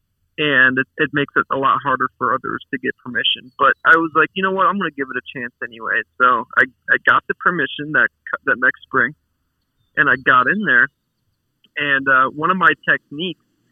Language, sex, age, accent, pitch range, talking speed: English, male, 40-59, American, 130-175 Hz, 215 wpm